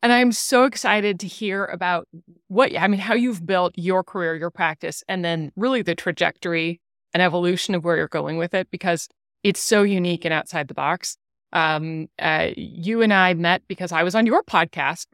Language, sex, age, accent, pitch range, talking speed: English, female, 30-49, American, 170-205 Hz, 200 wpm